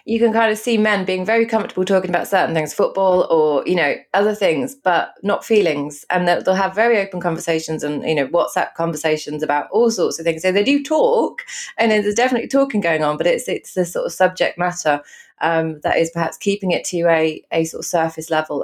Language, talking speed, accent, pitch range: English, 220 wpm, British, 165-230 Hz